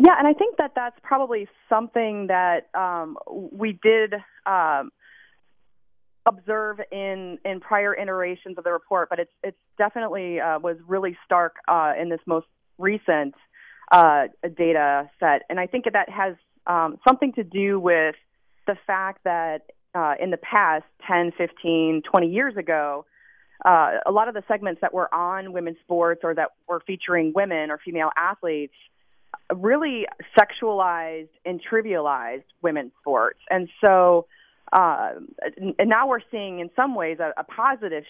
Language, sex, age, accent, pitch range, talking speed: English, female, 30-49, American, 160-205 Hz, 155 wpm